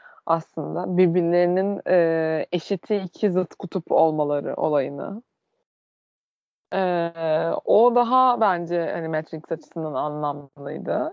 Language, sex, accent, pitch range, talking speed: Turkish, female, native, 155-195 Hz, 90 wpm